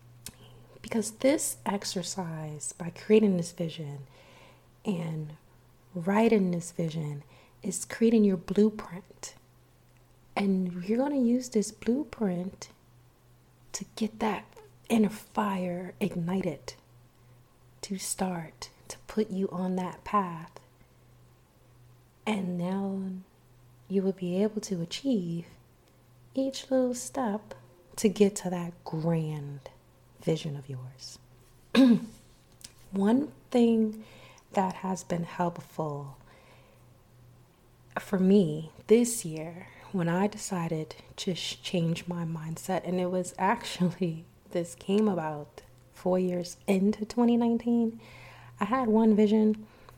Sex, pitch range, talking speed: female, 135-205 Hz, 105 wpm